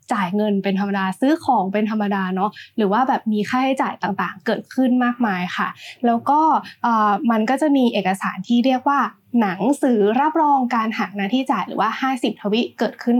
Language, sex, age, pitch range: Thai, female, 20-39, 205-265 Hz